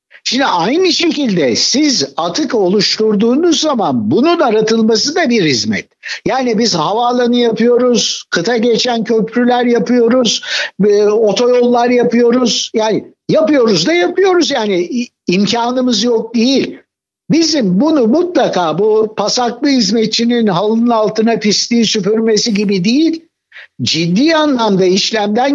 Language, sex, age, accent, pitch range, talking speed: Turkish, male, 60-79, native, 210-260 Hz, 105 wpm